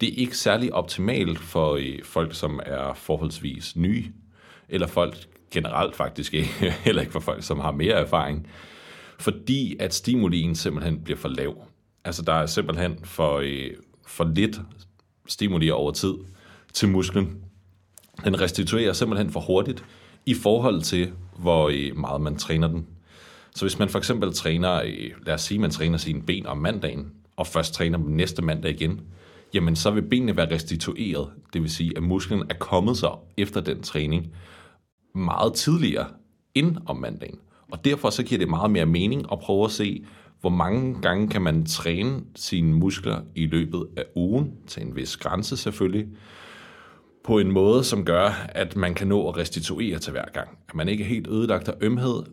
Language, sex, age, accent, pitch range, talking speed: Danish, male, 30-49, native, 80-100 Hz, 175 wpm